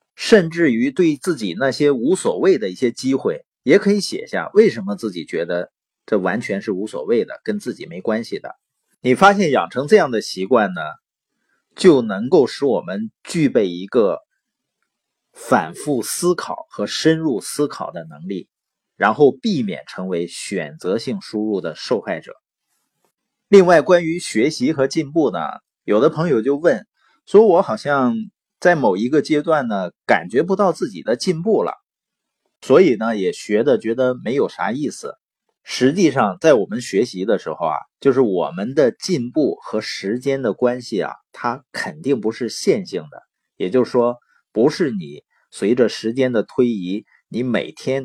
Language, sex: Chinese, male